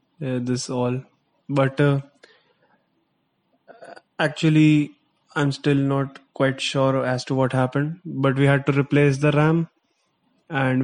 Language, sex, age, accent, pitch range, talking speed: English, male, 20-39, Indian, 125-140 Hz, 125 wpm